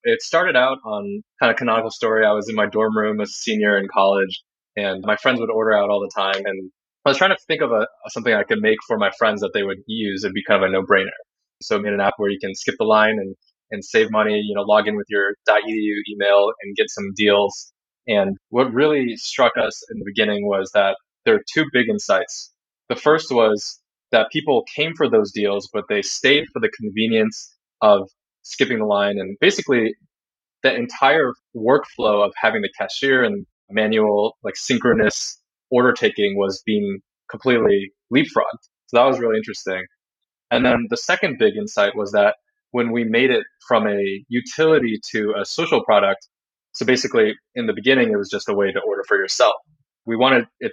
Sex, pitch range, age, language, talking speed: male, 105-150 Hz, 20-39, English, 205 wpm